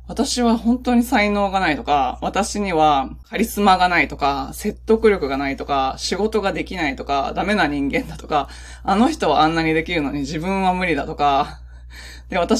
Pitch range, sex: 135-220 Hz, female